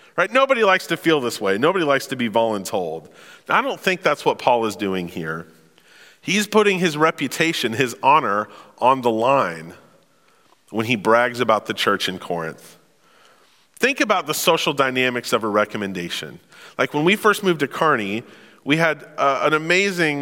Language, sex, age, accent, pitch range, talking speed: English, male, 40-59, American, 115-185 Hz, 175 wpm